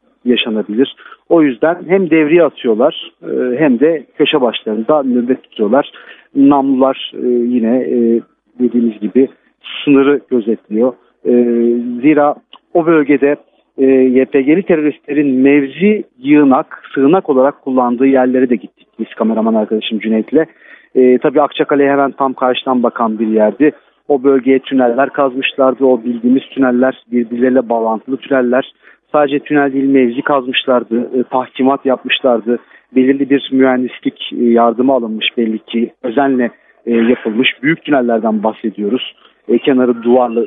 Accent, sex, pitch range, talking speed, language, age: native, male, 120-145 Hz, 110 wpm, Turkish, 50-69